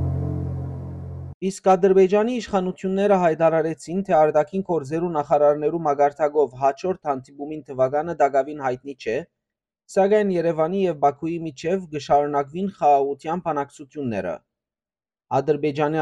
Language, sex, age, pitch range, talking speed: English, male, 30-49, 135-170 Hz, 125 wpm